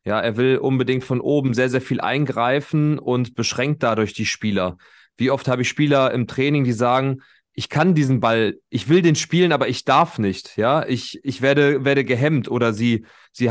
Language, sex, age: German, male, 30-49